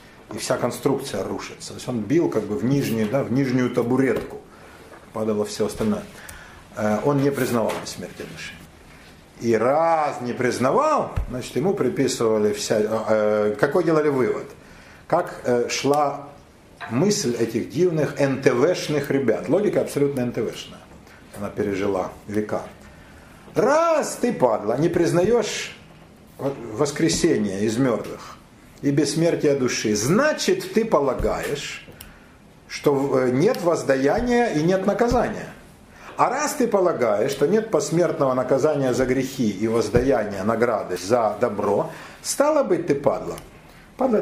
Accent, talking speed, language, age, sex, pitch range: native, 120 wpm, Russian, 50-69, male, 120-195 Hz